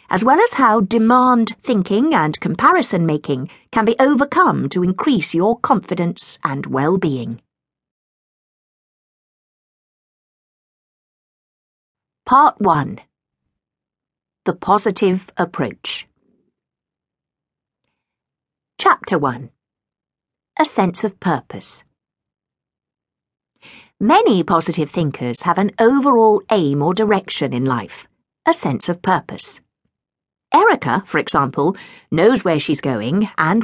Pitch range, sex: 155-225 Hz, female